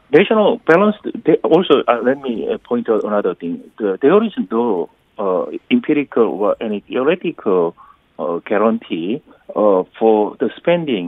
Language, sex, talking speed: English, male, 135 wpm